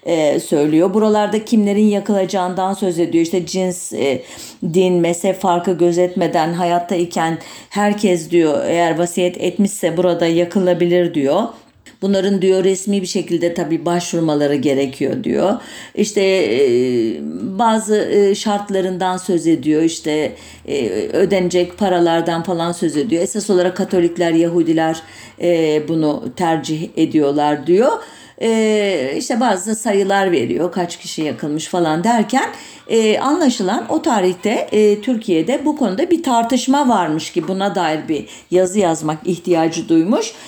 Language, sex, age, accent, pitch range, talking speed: German, female, 50-69, Turkish, 170-220 Hz, 125 wpm